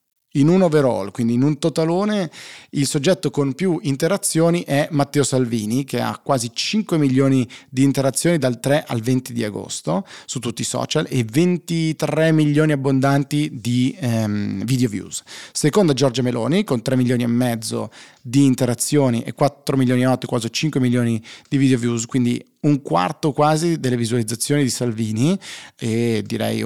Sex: male